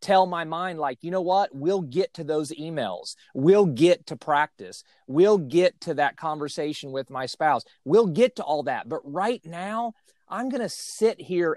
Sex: male